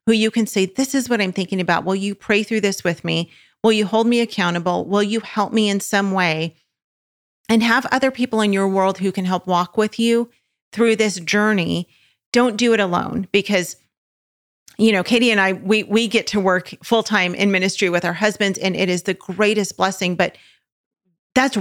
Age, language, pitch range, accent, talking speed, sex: 40-59, English, 180-220 Hz, American, 205 wpm, female